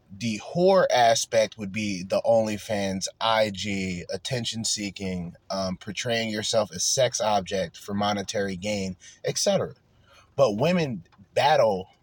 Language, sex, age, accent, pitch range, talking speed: English, male, 20-39, American, 100-120 Hz, 110 wpm